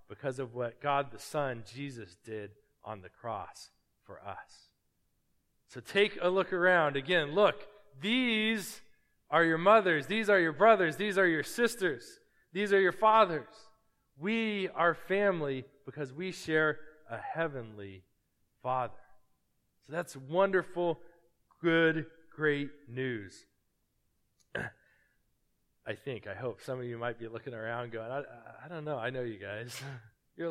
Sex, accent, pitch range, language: male, American, 135-200 Hz, English